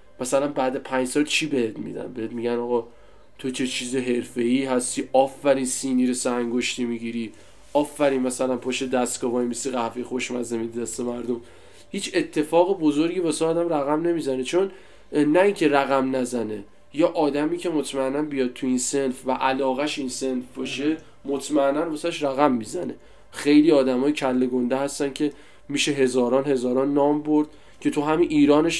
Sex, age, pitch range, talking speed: male, 20-39, 125-150 Hz, 155 wpm